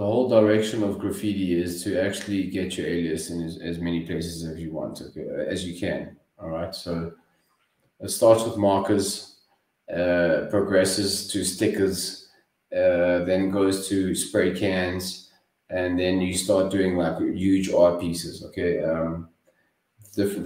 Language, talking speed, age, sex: English, 145 wpm, 20-39, male